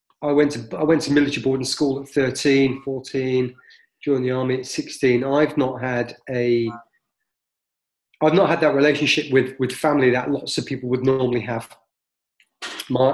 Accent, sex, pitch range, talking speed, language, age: British, male, 125-145 Hz, 170 wpm, English, 30-49